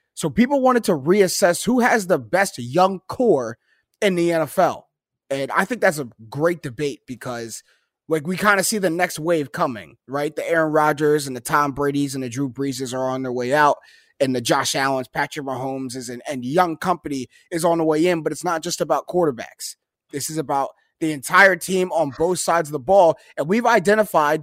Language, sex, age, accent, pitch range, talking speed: English, male, 20-39, American, 145-185 Hz, 205 wpm